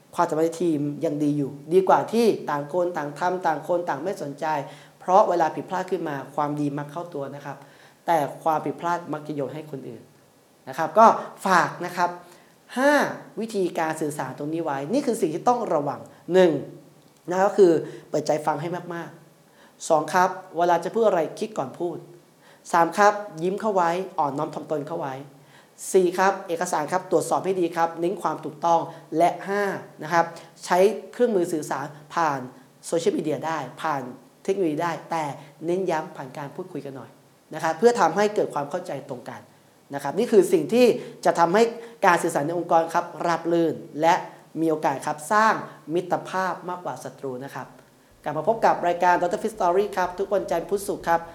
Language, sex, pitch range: Thai, male, 155-185 Hz